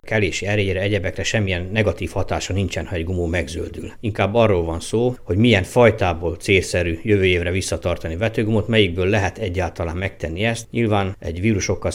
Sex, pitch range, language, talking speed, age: male, 90-110 Hz, Hungarian, 160 wpm, 60-79